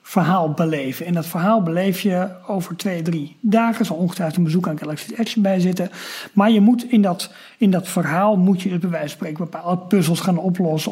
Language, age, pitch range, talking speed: Dutch, 50-69, 170-215 Hz, 210 wpm